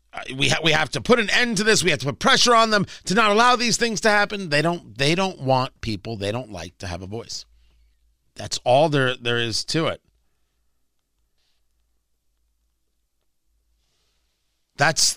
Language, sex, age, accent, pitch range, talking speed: English, male, 40-59, American, 120-185 Hz, 180 wpm